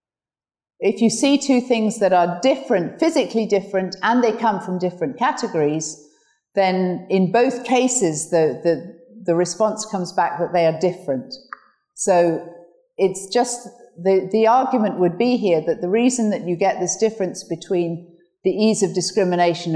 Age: 50-69